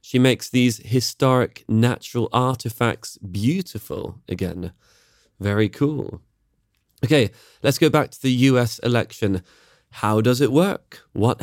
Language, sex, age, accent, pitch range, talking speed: English, male, 20-39, British, 105-135 Hz, 120 wpm